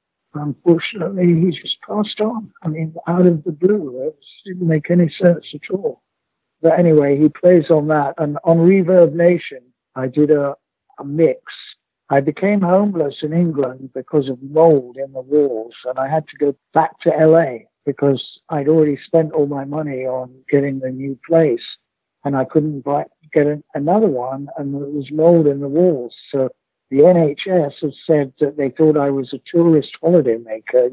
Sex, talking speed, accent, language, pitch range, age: male, 175 wpm, British, English, 135-170 Hz, 60-79